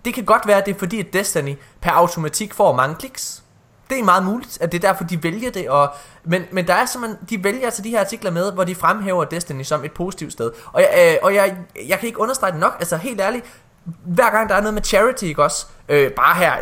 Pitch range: 145-200 Hz